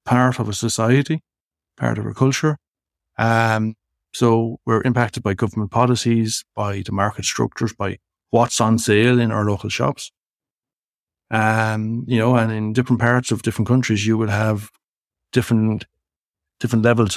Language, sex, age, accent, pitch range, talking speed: English, male, 60-79, Irish, 105-130 Hz, 150 wpm